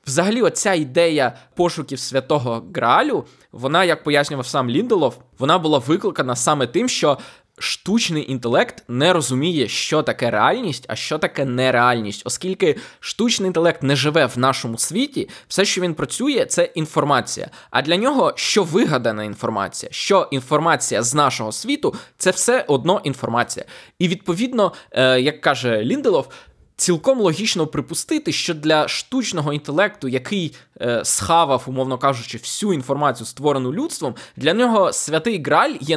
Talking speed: 140 wpm